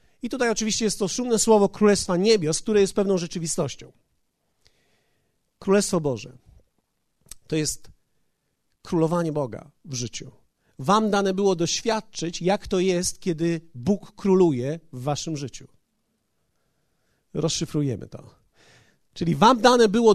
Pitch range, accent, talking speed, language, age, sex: 160-220 Hz, native, 120 wpm, Polish, 40-59, male